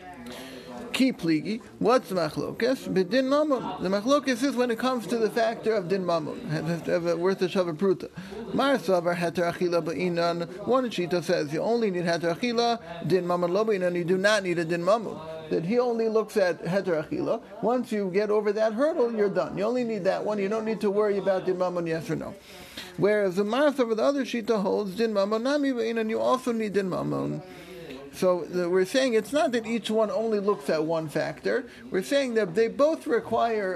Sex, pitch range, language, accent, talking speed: male, 180-235 Hz, English, American, 185 wpm